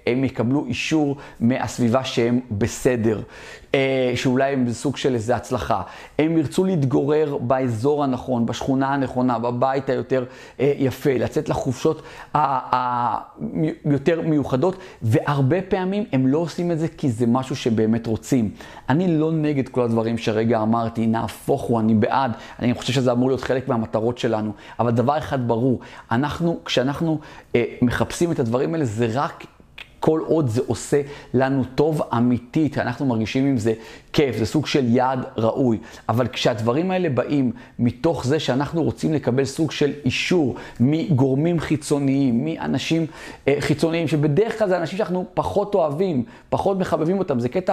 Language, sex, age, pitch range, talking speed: Hebrew, male, 30-49, 125-160 Hz, 145 wpm